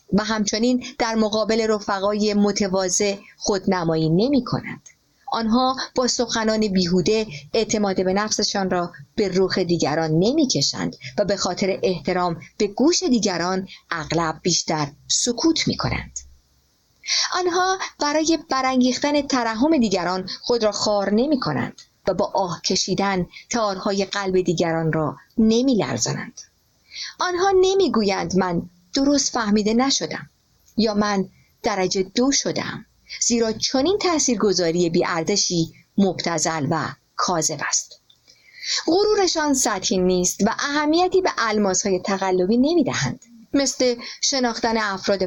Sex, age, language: female, 50-69, Persian